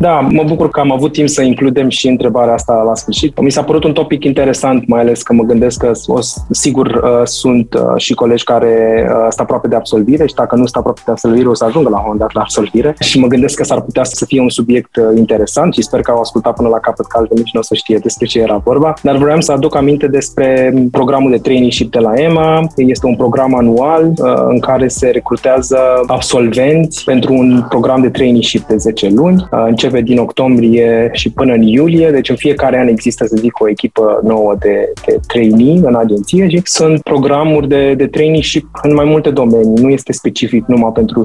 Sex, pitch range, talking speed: male, 115-140 Hz, 215 wpm